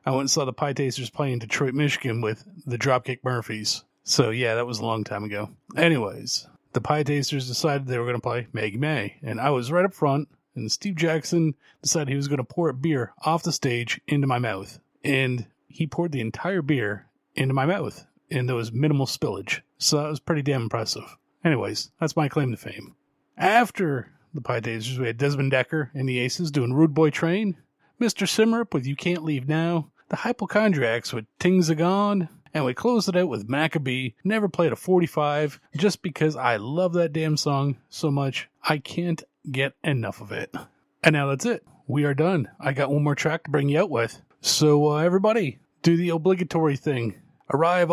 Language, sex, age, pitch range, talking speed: English, male, 30-49, 130-165 Hz, 200 wpm